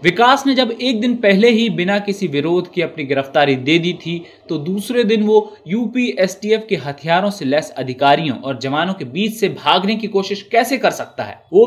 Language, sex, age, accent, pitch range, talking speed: Hindi, male, 20-39, native, 160-220 Hz, 200 wpm